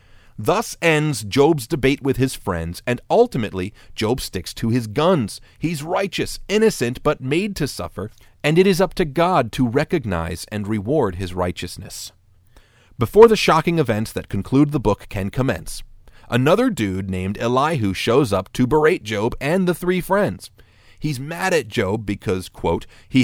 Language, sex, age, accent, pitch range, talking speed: English, male, 40-59, American, 100-170 Hz, 165 wpm